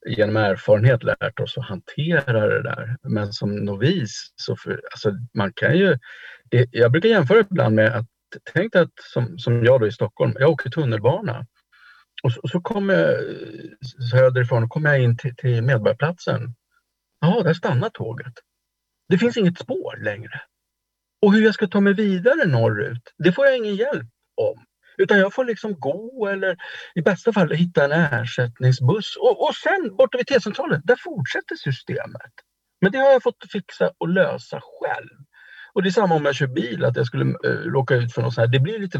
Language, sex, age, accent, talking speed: Swedish, male, 50-69, Norwegian, 185 wpm